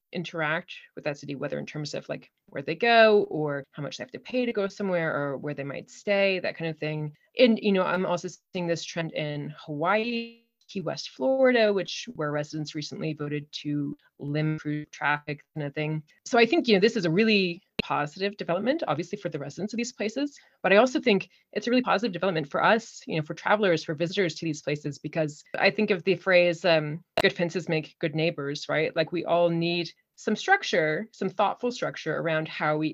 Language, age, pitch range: English, 30-49, 150-200 Hz